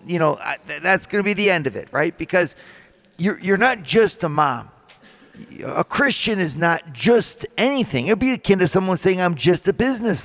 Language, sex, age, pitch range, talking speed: English, male, 50-69, 165-215 Hz, 205 wpm